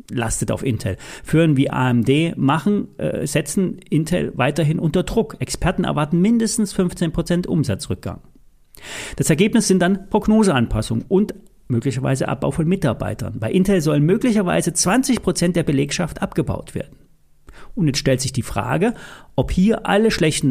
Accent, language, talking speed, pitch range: German, German, 140 wpm, 130-190 Hz